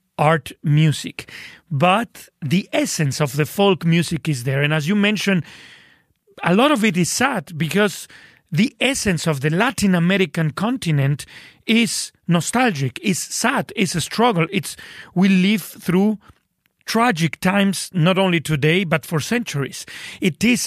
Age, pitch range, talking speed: 40-59, 155-200 Hz, 145 wpm